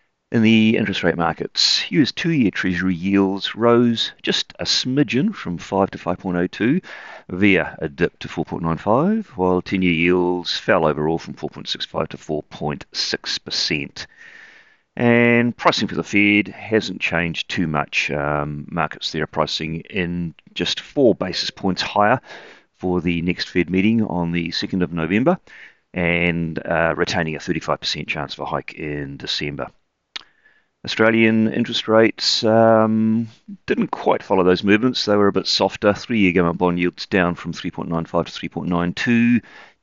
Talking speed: 145 wpm